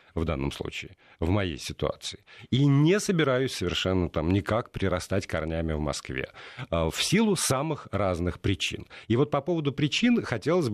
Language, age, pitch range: Russian, 40-59, 90-140 Hz